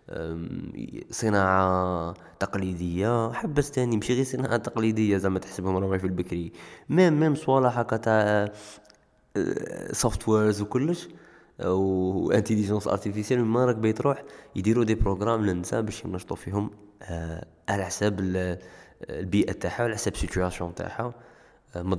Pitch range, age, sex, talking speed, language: 95-120 Hz, 20-39, male, 130 wpm, Arabic